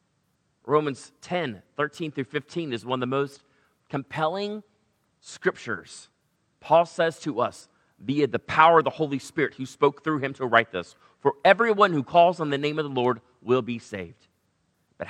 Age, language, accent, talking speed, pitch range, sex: 30-49, English, American, 180 wpm, 125-150 Hz, male